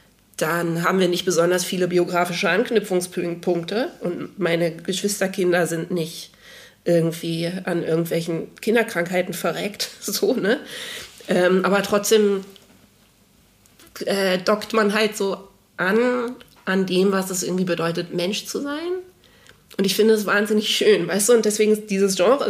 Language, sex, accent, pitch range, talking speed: German, female, German, 185-220 Hz, 135 wpm